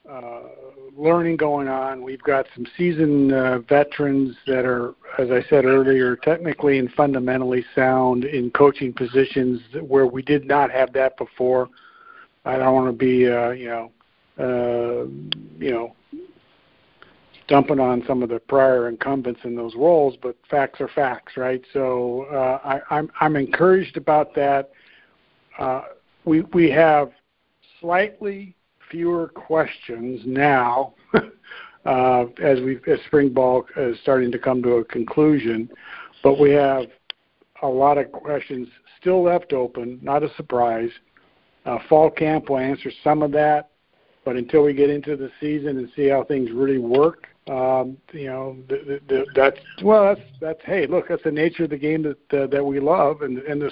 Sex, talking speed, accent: male, 160 wpm, American